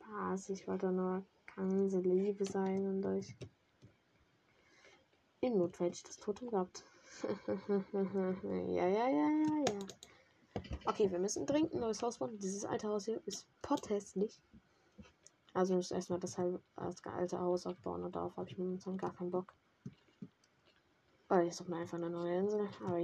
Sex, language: female, German